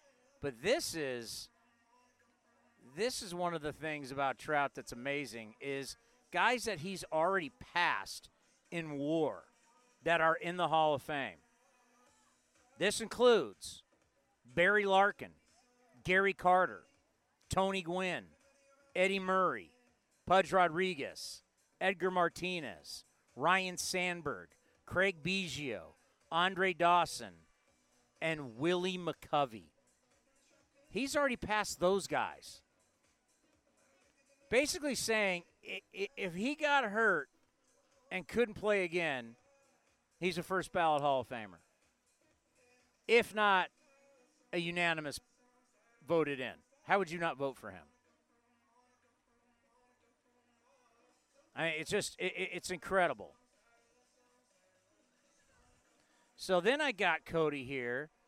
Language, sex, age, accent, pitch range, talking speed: English, male, 50-69, American, 155-240 Hz, 100 wpm